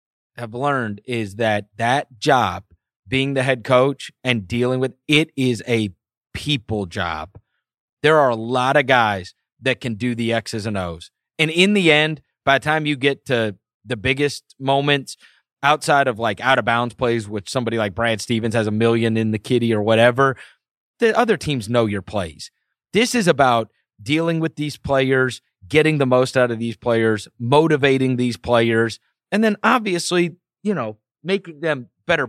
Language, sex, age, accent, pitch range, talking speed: English, male, 30-49, American, 115-145 Hz, 175 wpm